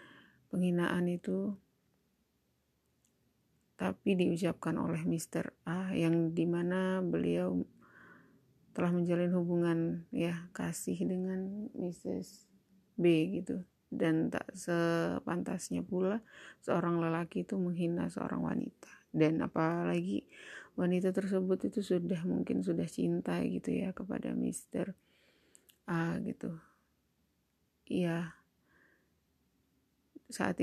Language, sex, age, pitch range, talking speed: Indonesian, female, 30-49, 170-190 Hz, 90 wpm